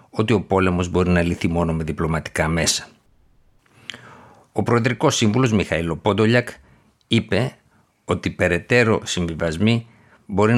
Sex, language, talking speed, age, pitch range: male, Greek, 115 wpm, 60-79, 90-110 Hz